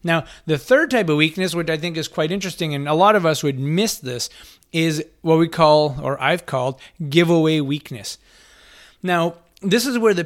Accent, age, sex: American, 30-49, male